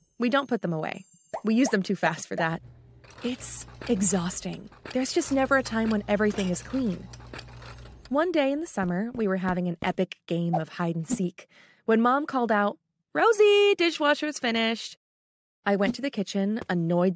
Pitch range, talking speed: 170-230 Hz, 170 wpm